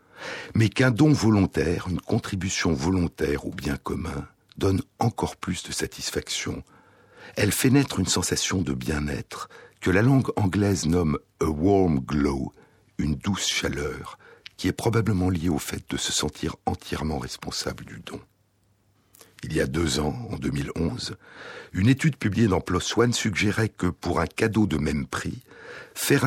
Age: 60-79